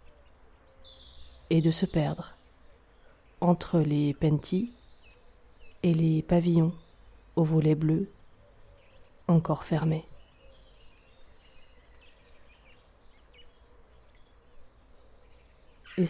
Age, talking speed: 30-49, 60 wpm